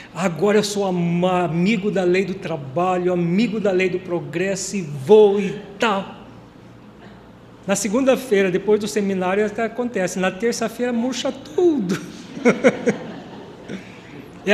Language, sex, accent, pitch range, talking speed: Portuguese, male, Brazilian, 185-240 Hz, 125 wpm